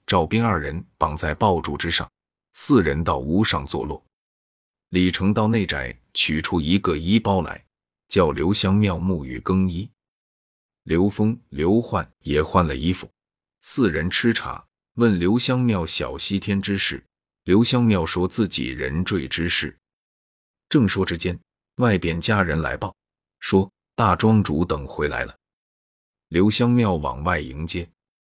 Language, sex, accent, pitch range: Chinese, male, native, 85-110 Hz